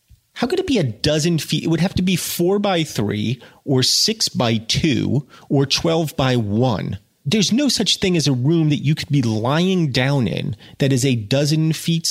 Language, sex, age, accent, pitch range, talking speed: English, male, 30-49, American, 115-170 Hz, 210 wpm